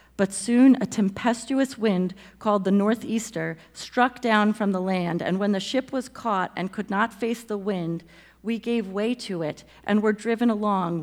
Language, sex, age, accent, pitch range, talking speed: English, female, 40-59, American, 185-220 Hz, 185 wpm